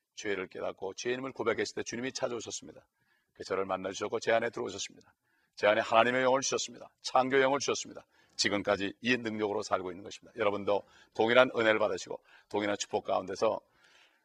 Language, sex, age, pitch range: Korean, male, 40-59, 110-140 Hz